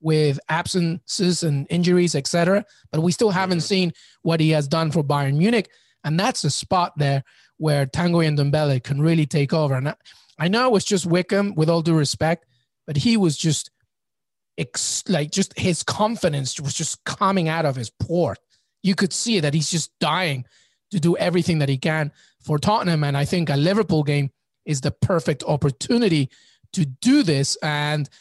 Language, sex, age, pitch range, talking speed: English, male, 30-49, 150-190 Hz, 185 wpm